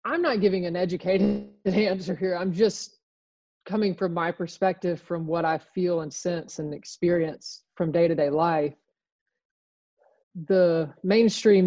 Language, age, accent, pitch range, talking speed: English, 30-49, American, 170-205 Hz, 135 wpm